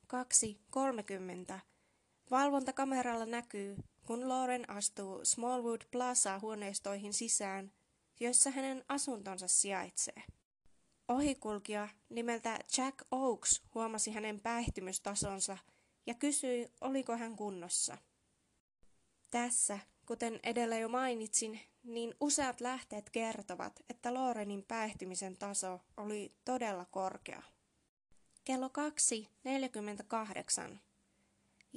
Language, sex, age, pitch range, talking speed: Finnish, female, 20-39, 205-250 Hz, 85 wpm